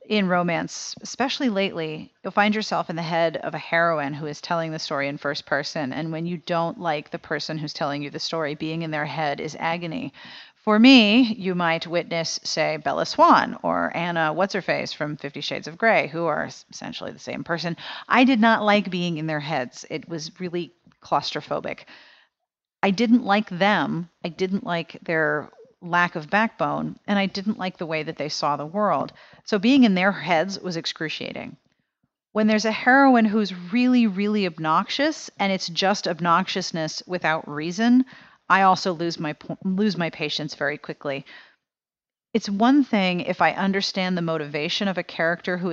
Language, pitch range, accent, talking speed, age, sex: English, 160-205 Hz, American, 180 wpm, 40-59, female